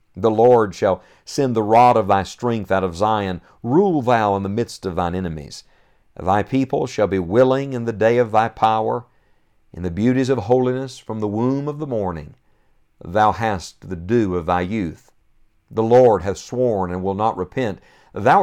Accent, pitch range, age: American, 100-130 Hz, 50-69